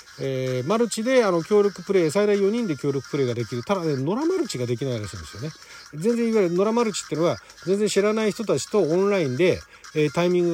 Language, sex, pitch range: Japanese, male, 125-200 Hz